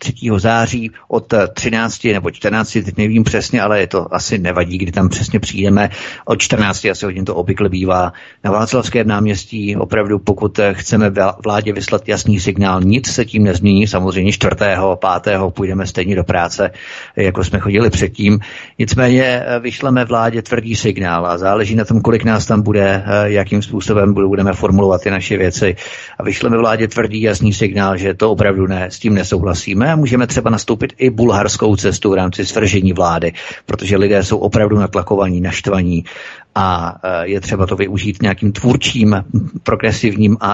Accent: native